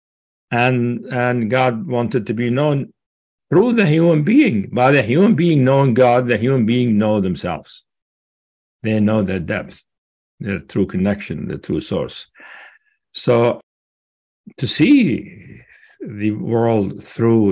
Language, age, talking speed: English, 60-79, 130 wpm